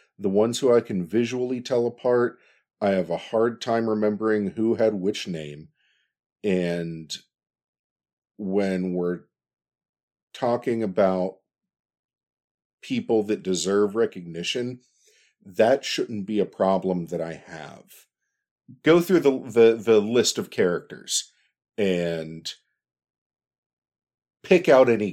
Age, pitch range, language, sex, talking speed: 50-69, 80-120 Hz, English, male, 110 wpm